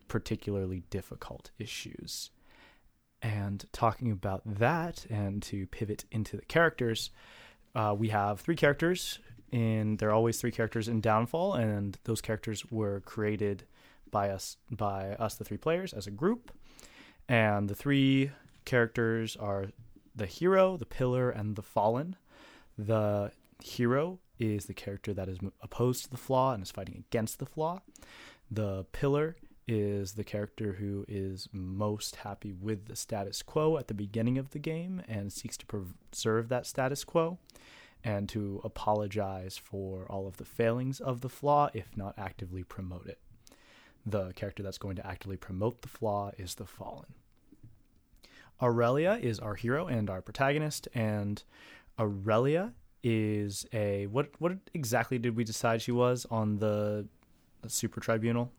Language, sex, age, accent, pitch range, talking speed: English, male, 20-39, American, 100-125 Hz, 150 wpm